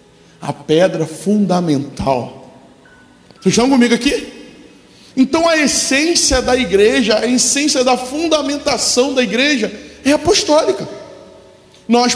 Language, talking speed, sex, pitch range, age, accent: Portuguese, 105 wpm, male, 175-260 Hz, 20-39, Brazilian